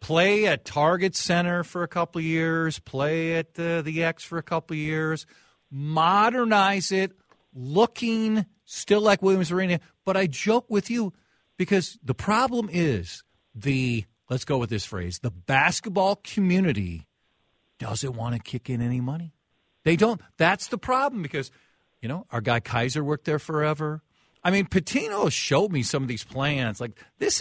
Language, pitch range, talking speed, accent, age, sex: English, 130-195 Hz, 160 wpm, American, 50-69, male